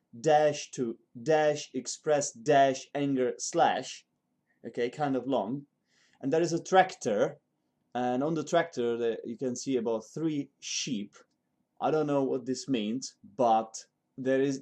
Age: 30-49